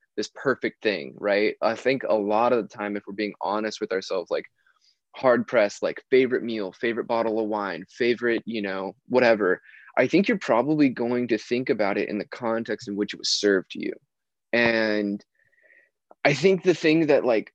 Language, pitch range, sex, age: English, 105-130 Hz, male, 20-39